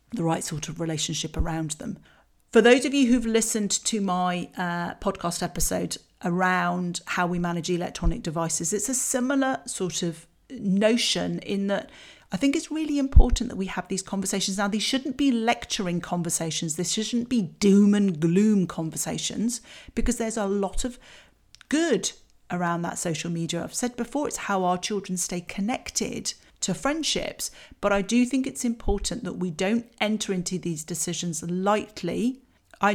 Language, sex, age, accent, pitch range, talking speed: English, female, 40-59, British, 175-220 Hz, 165 wpm